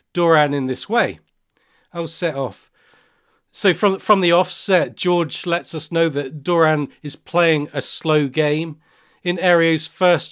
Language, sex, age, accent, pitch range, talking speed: English, male, 40-59, British, 150-175 Hz, 150 wpm